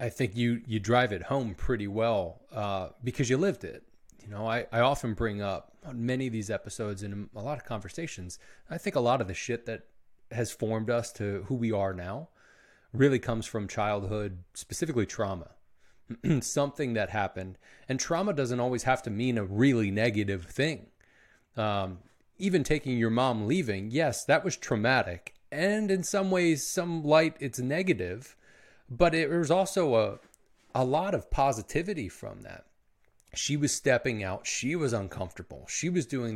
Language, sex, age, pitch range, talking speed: English, male, 30-49, 105-140 Hz, 175 wpm